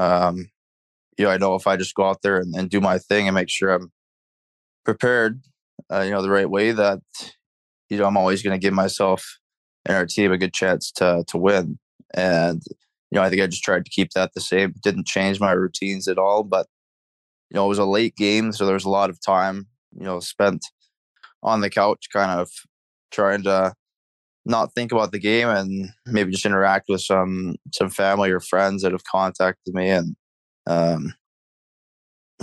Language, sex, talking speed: English, male, 205 wpm